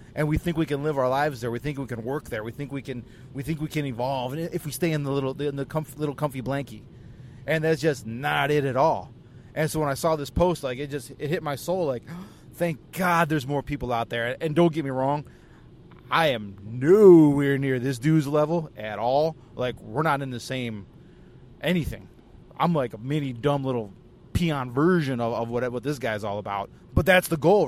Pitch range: 125-155 Hz